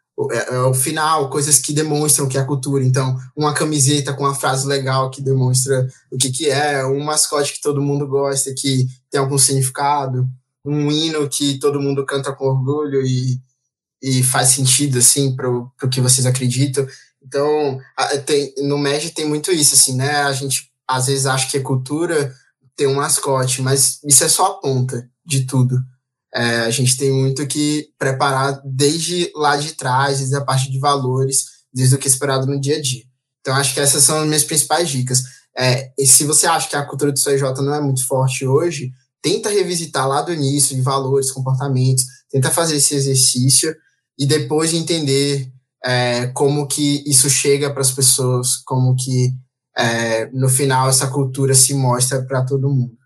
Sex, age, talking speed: male, 20-39, 180 wpm